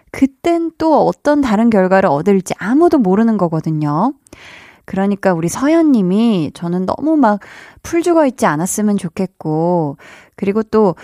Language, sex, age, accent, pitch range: Korean, female, 20-39, native, 175-245 Hz